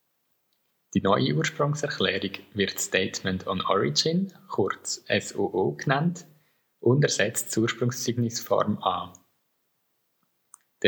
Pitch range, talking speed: 100-125 Hz, 90 wpm